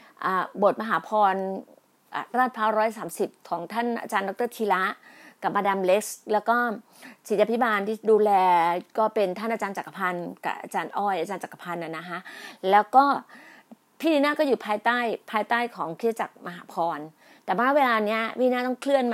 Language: Thai